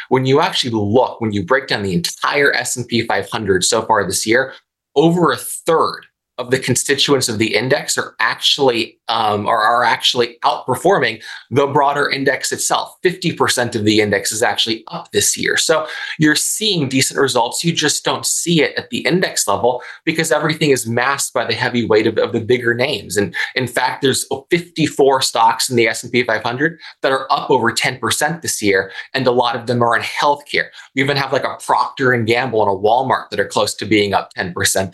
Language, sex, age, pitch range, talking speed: English, male, 20-39, 105-135 Hz, 200 wpm